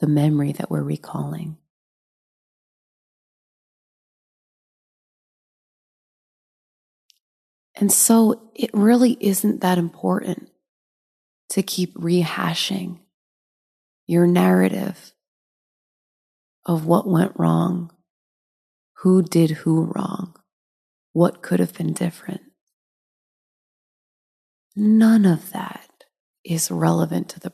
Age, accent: 30-49, American